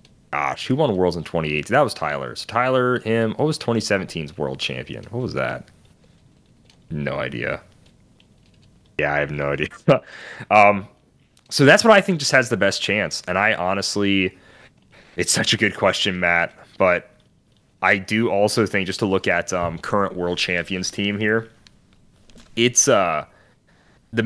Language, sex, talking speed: English, male, 160 wpm